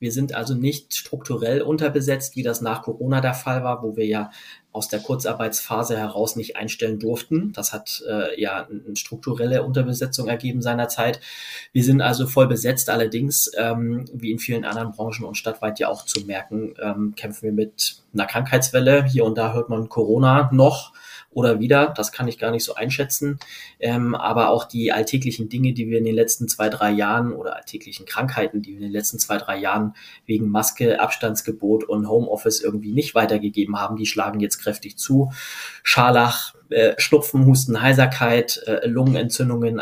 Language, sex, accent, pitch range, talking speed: German, male, German, 110-130 Hz, 180 wpm